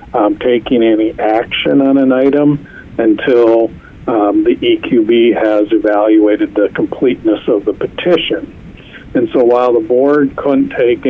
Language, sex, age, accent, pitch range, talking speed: English, male, 50-69, American, 110-135 Hz, 135 wpm